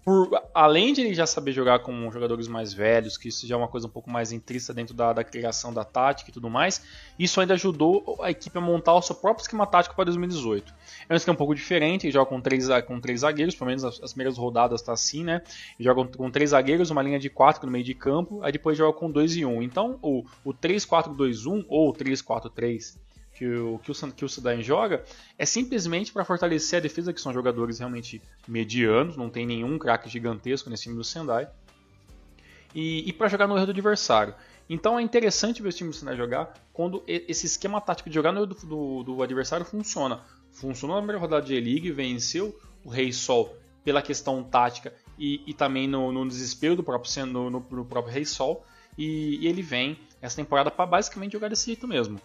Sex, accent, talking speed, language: male, Brazilian, 215 wpm, Portuguese